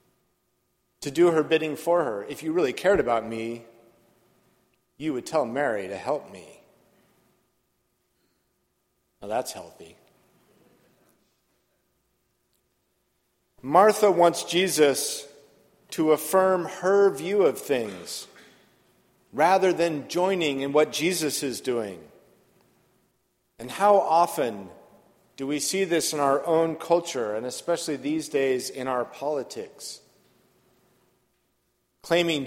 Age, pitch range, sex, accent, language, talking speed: 50-69, 135-180 Hz, male, American, English, 105 wpm